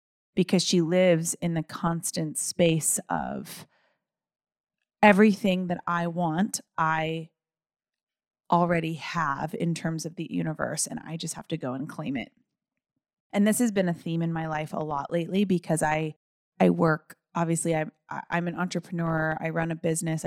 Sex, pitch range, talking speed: female, 160-190 Hz, 160 wpm